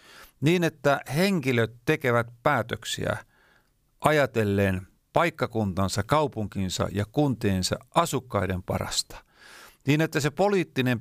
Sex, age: male, 50-69